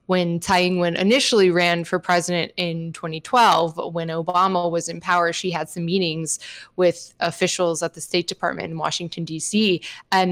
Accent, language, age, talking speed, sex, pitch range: American, English, 20-39, 165 wpm, female, 175-210 Hz